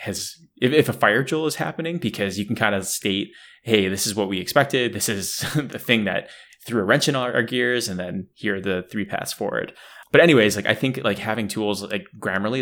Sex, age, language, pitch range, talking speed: male, 20-39, English, 95-120 Hz, 230 wpm